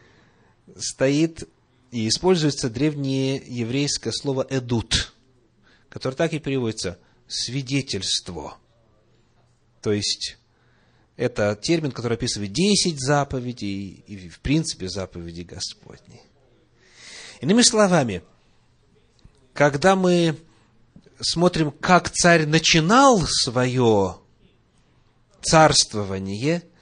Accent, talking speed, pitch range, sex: native, 80 wpm, 110-145 Hz, male